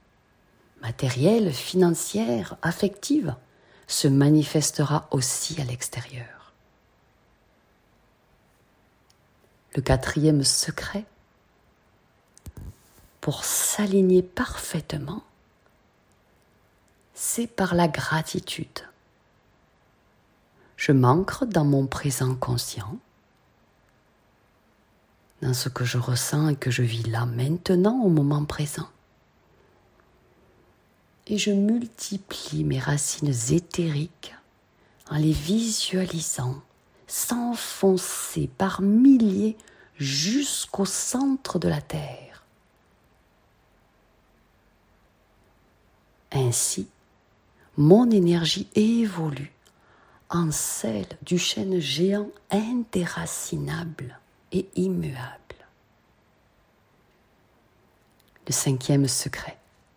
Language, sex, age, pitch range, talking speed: French, female, 40-59, 140-195 Hz, 70 wpm